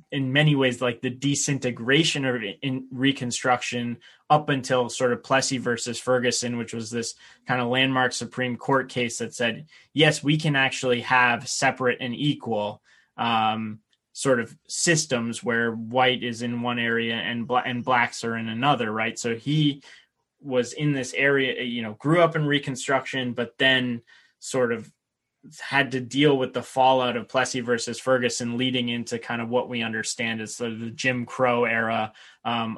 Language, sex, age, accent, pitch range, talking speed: English, male, 20-39, American, 120-135 Hz, 170 wpm